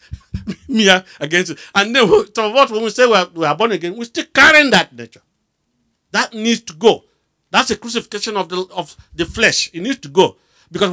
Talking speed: 210 wpm